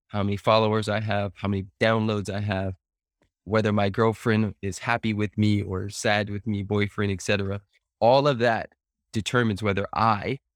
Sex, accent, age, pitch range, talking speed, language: male, American, 20-39, 95-115 Hz, 170 wpm, English